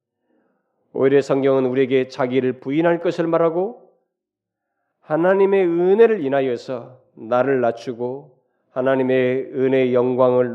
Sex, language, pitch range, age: male, Korean, 125-170 Hz, 40-59